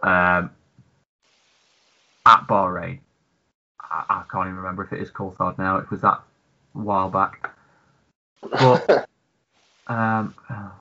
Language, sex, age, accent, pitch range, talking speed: English, male, 30-49, British, 105-145 Hz, 130 wpm